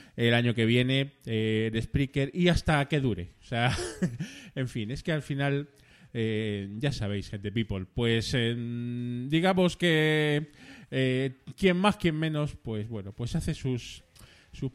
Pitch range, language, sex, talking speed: 115-150 Hz, Spanish, male, 160 wpm